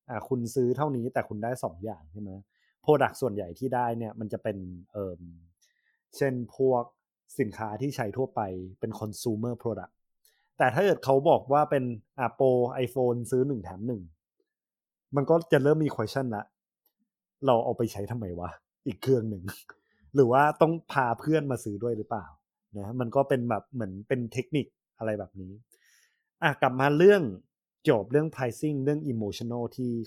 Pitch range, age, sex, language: 110-145 Hz, 20-39, male, Thai